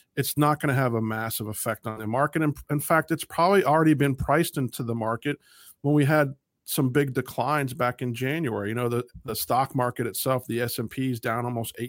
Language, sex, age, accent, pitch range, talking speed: English, male, 40-59, American, 115-145 Hz, 210 wpm